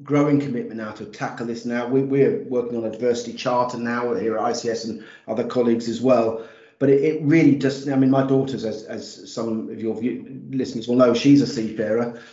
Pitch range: 115-140 Hz